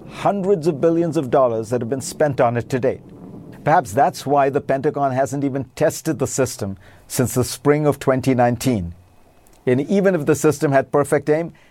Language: English